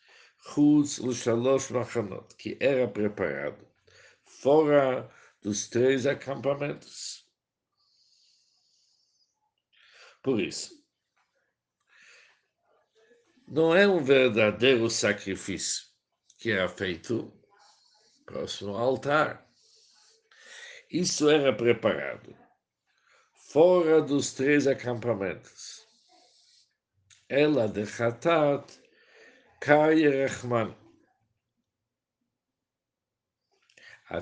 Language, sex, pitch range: Portuguese, male, 110-155 Hz